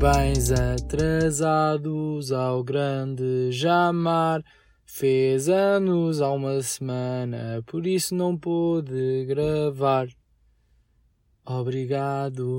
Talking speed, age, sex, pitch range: 75 wpm, 20-39, male, 130-190 Hz